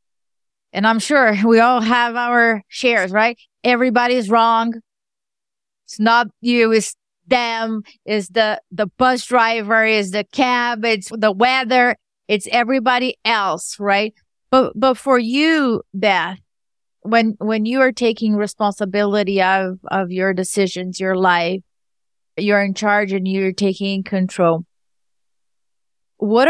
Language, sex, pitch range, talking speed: English, female, 190-230 Hz, 125 wpm